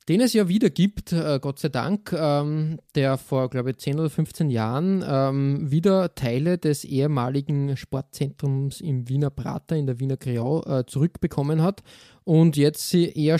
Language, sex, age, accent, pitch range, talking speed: German, male, 20-39, German, 140-180 Hz, 150 wpm